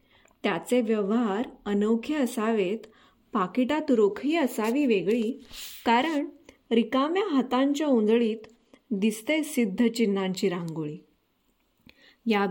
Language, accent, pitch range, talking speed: Marathi, native, 210-255 Hz, 75 wpm